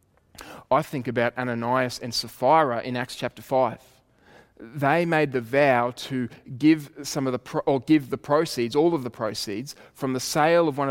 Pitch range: 120-155 Hz